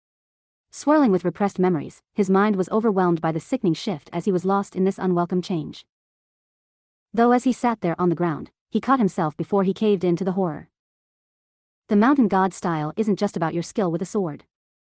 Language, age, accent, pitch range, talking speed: English, 30-49, American, 170-215 Hz, 200 wpm